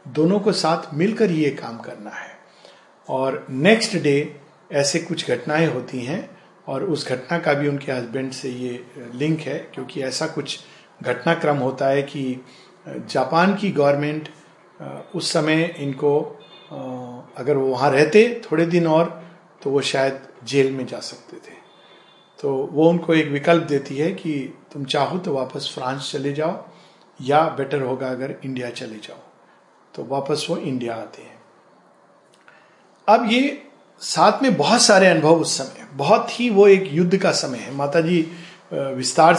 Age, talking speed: 40-59, 155 wpm